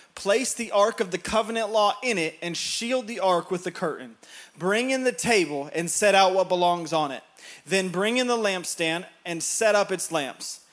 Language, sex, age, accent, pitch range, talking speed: English, male, 30-49, American, 160-195 Hz, 205 wpm